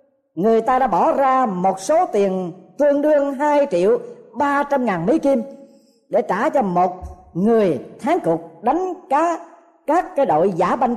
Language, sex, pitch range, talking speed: Vietnamese, female, 195-295 Hz, 170 wpm